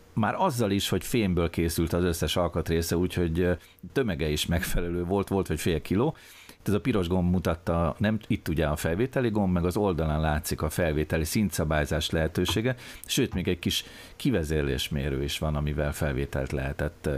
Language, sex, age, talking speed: Hungarian, male, 50-69, 165 wpm